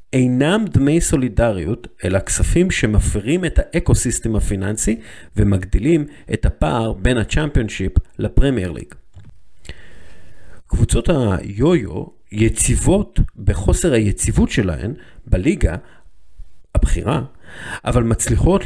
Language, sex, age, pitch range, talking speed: Hebrew, male, 50-69, 95-125 Hz, 80 wpm